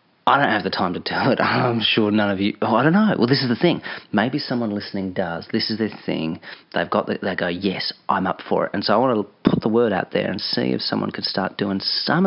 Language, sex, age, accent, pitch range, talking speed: English, male, 30-49, Australian, 95-115 Hz, 285 wpm